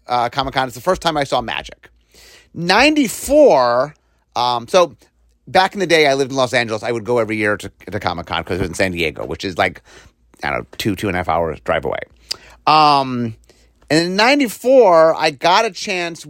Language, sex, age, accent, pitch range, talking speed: English, male, 30-49, American, 115-180 Hz, 210 wpm